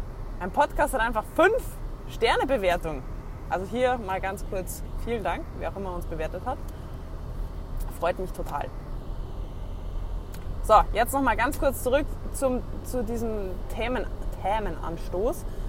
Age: 20-39